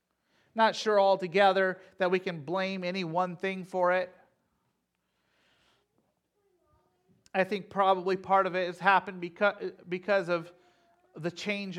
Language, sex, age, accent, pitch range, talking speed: English, male, 40-59, American, 165-190 Hz, 120 wpm